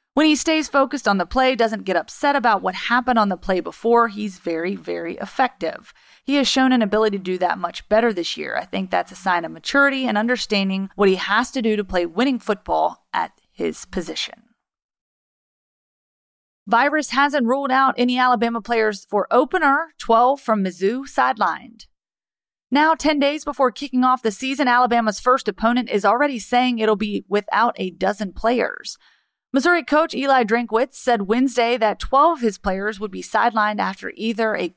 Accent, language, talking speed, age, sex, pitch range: American, English, 180 wpm, 30-49, female, 195-255 Hz